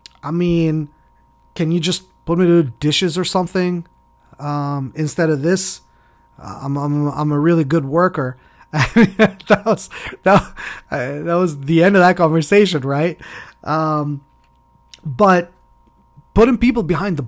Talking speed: 135 wpm